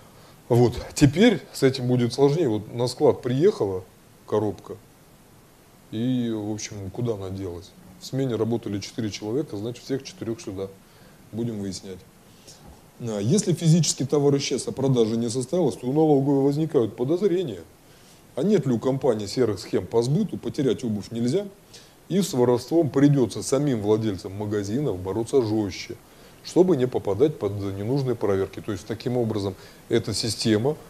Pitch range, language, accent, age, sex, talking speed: 105-140 Hz, Russian, native, 20-39, male, 145 wpm